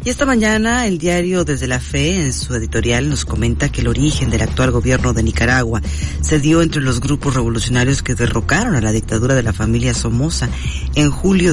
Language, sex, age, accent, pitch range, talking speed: Spanish, female, 40-59, Mexican, 105-130 Hz, 200 wpm